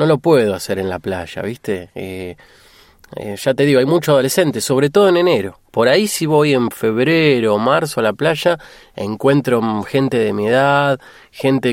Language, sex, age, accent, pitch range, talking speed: Spanish, male, 20-39, Argentinian, 105-145 Hz, 190 wpm